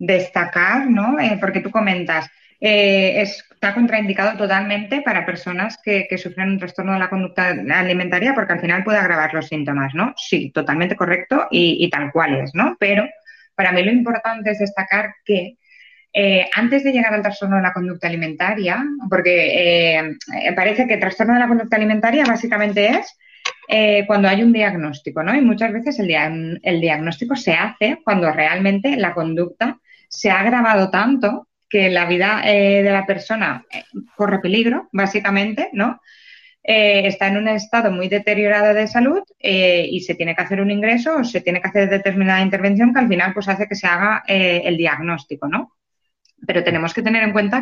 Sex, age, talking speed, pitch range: female, 20-39, 180 wpm, 180-220 Hz